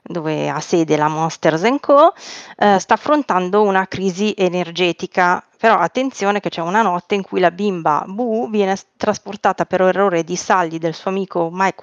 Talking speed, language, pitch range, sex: 165 wpm, Italian, 175-210 Hz, female